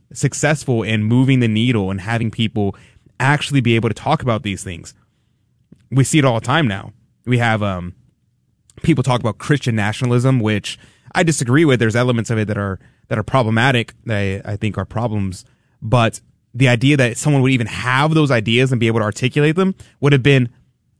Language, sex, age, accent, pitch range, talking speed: English, male, 20-39, American, 105-130 Hz, 195 wpm